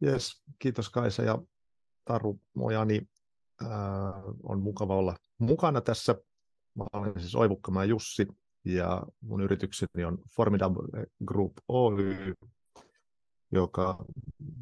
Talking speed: 105 wpm